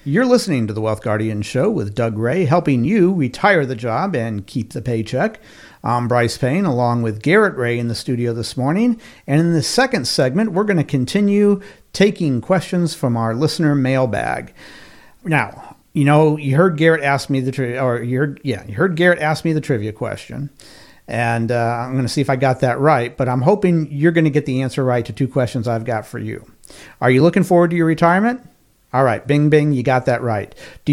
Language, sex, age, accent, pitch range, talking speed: English, male, 50-69, American, 120-155 Hz, 215 wpm